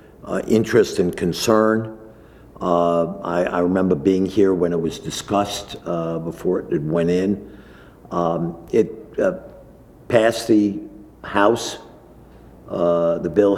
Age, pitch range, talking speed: 60-79, 85-95 Hz, 125 wpm